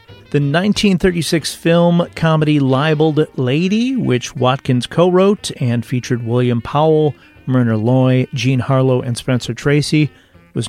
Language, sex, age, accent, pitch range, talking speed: English, male, 40-59, American, 125-155 Hz, 120 wpm